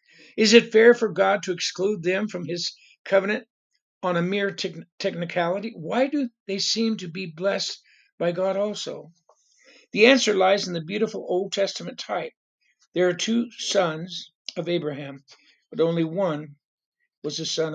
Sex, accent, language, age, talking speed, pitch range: male, American, English, 60-79, 155 wpm, 165-205 Hz